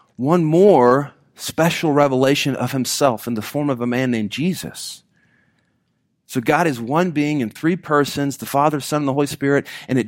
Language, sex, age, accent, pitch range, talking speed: English, male, 40-59, American, 120-155 Hz, 185 wpm